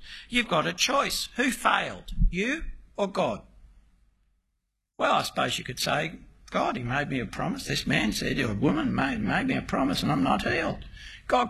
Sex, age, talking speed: male, 60-79, 195 wpm